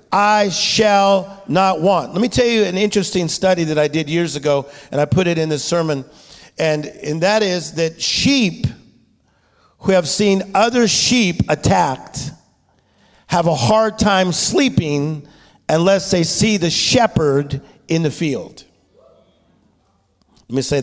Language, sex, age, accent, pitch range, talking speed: English, male, 50-69, American, 165-225 Hz, 145 wpm